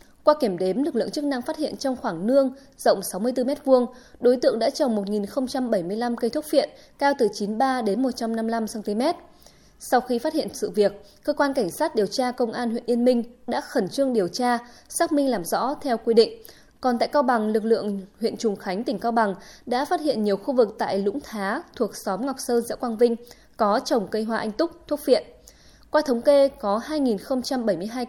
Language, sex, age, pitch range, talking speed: Vietnamese, female, 20-39, 215-270 Hz, 205 wpm